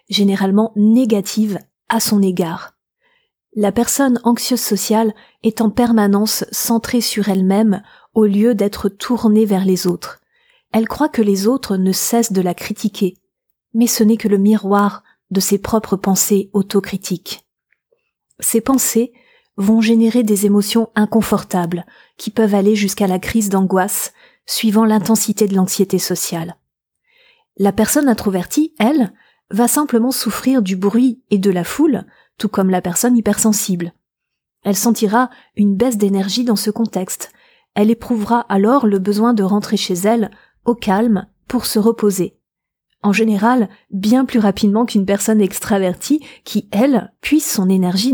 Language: French